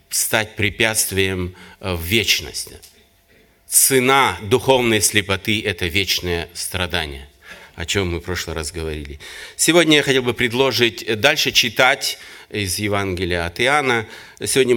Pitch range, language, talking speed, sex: 100-135 Hz, Russian, 120 wpm, male